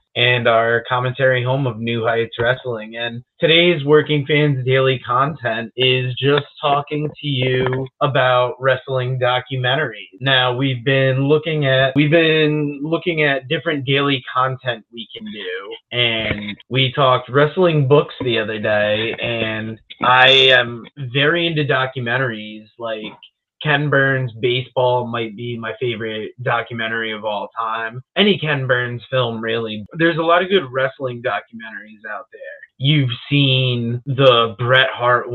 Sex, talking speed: male, 140 wpm